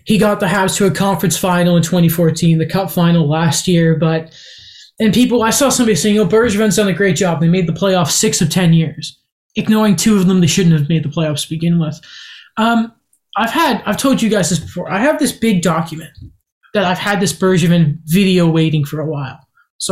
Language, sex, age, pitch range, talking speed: English, male, 20-39, 170-220 Hz, 225 wpm